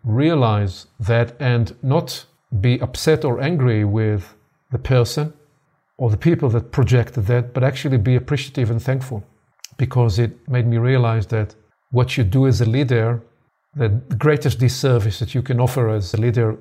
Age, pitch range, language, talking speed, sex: 40-59, 115-135 Hz, English, 165 wpm, male